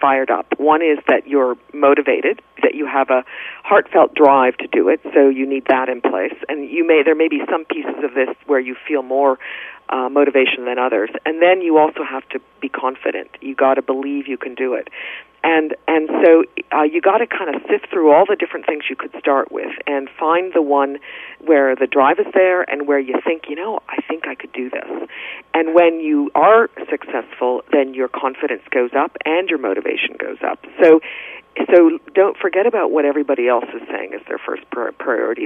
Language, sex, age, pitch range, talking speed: English, female, 40-59, 135-165 Hz, 210 wpm